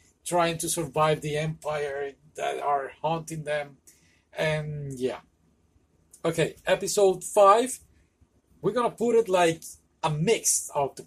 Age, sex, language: 30-49, male, English